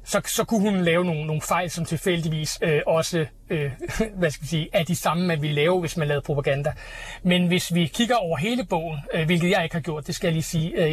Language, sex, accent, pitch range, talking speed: Danish, male, native, 155-190 Hz, 255 wpm